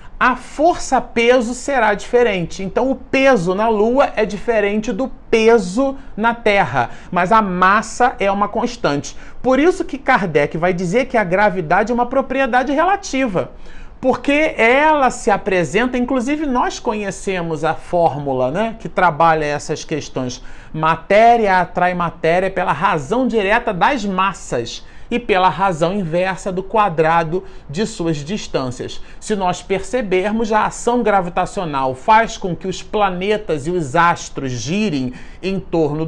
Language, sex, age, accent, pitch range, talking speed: Portuguese, male, 40-59, Brazilian, 180-245 Hz, 140 wpm